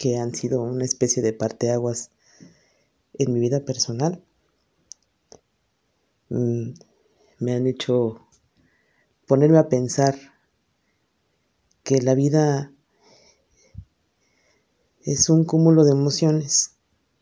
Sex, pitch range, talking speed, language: female, 130-150 Hz, 85 wpm, Spanish